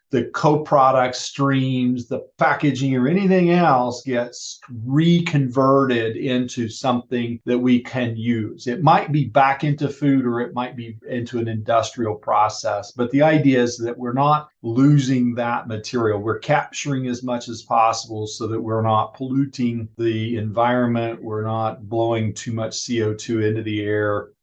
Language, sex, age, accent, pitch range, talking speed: English, male, 40-59, American, 115-135 Hz, 150 wpm